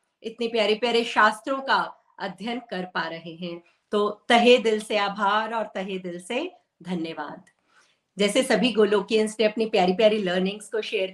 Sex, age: female, 50-69